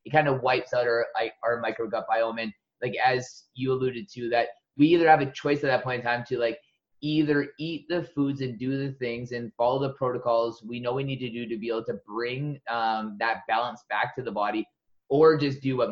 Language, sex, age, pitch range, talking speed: English, male, 20-39, 120-140 Hz, 240 wpm